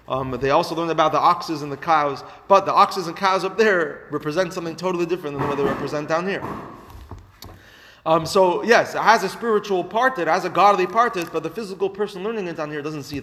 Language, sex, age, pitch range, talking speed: English, male, 30-49, 140-190 Hz, 230 wpm